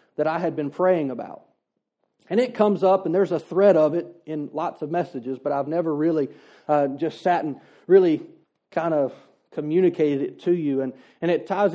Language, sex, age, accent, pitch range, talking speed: English, male, 40-59, American, 160-210 Hz, 200 wpm